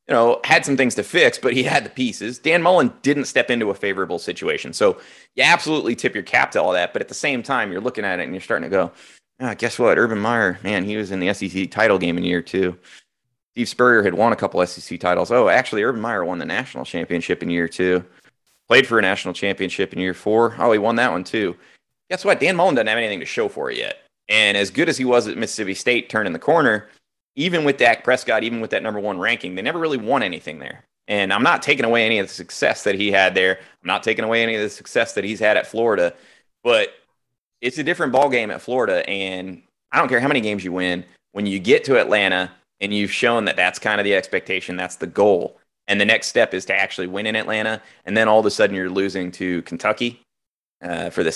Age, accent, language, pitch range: 30-49, American, English, 95-120 Hz